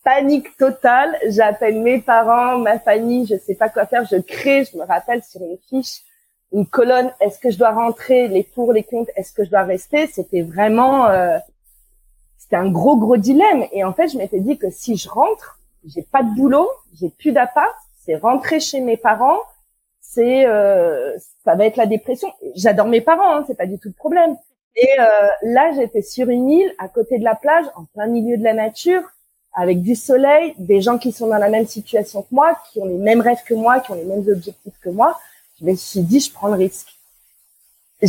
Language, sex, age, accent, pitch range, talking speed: French, female, 30-49, French, 200-275 Hz, 220 wpm